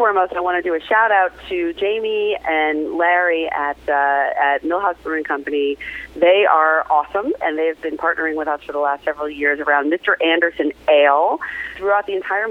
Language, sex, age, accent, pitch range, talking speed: English, female, 40-59, American, 150-185 Hz, 185 wpm